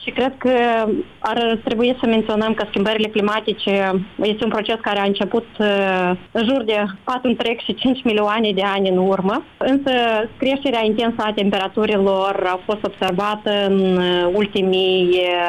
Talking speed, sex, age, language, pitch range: 135 wpm, female, 30-49, Romanian, 185-220 Hz